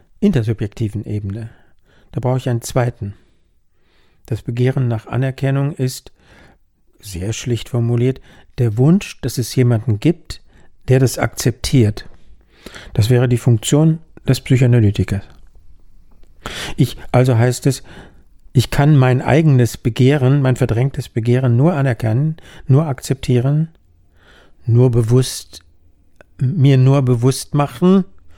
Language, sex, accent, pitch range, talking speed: German, male, German, 100-130 Hz, 110 wpm